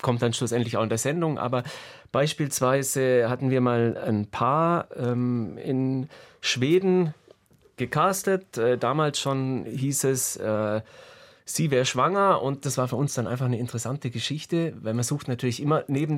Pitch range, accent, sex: 120-145 Hz, German, male